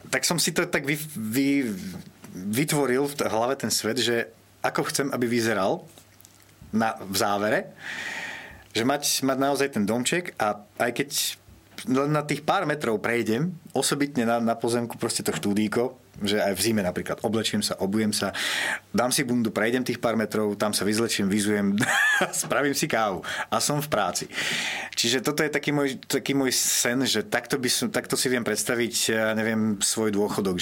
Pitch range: 105-130 Hz